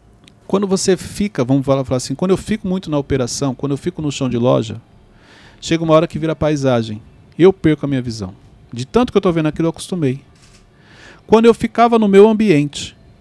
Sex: male